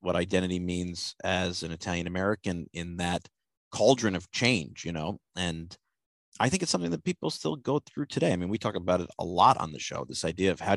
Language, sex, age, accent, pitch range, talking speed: English, male, 40-59, American, 90-105 Hz, 225 wpm